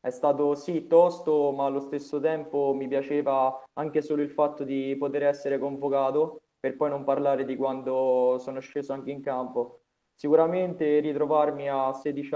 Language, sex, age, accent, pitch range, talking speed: Italian, male, 20-39, native, 130-150 Hz, 160 wpm